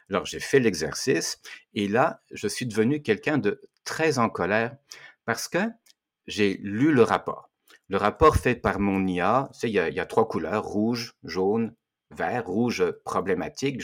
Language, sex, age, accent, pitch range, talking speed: French, male, 60-79, French, 90-115 Hz, 160 wpm